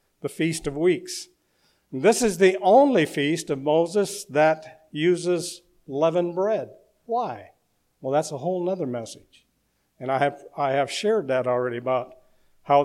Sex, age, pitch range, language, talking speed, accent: male, 50-69, 135-185 Hz, English, 150 wpm, American